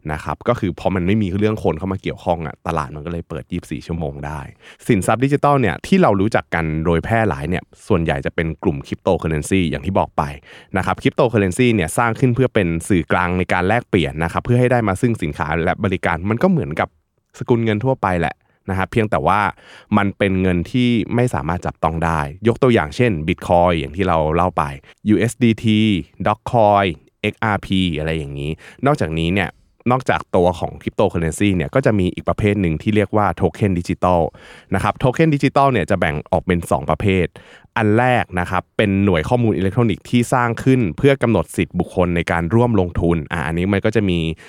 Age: 20-39